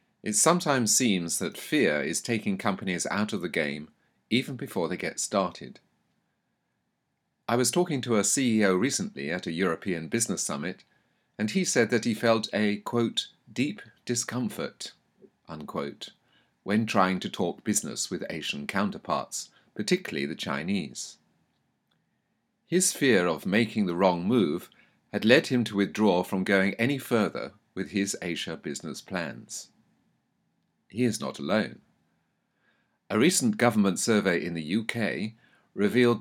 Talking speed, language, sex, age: 140 wpm, English, male, 40-59